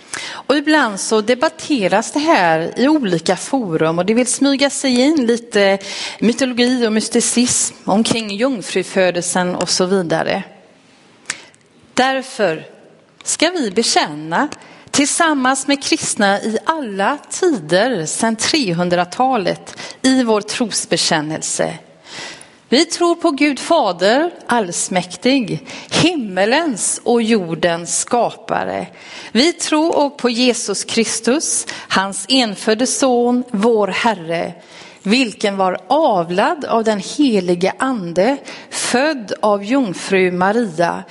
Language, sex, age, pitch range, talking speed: Swedish, female, 40-59, 195-275 Hz, 100 wpm